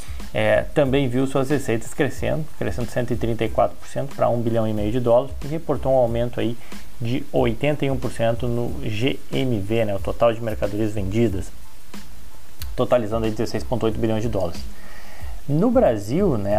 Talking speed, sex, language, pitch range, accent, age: 130 wpm, male, Portuguese, 110-135 Hz, Brazilian, 20-39